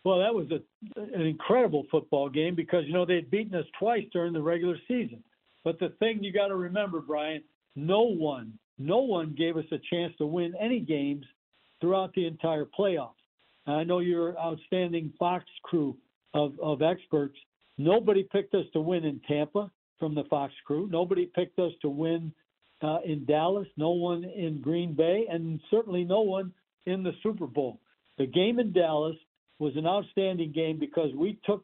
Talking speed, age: 180 wpm, 60-79